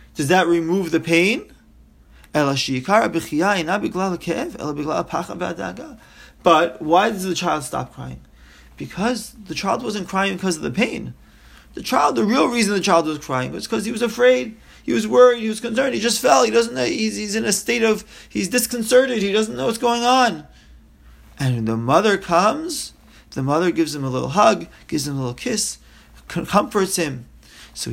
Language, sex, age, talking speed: English, male, 30-49, 175 wpm